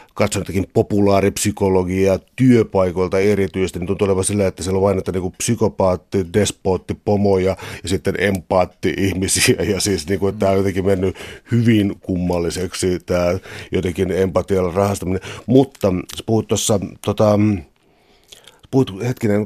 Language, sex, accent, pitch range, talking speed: Finnish, male, native, 95-105 Hz, 115 wpm